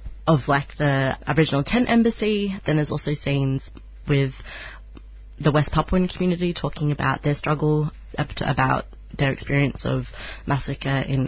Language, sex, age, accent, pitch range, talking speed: English, female, 20-39, Australian, 140-155 Hz, 135 wpm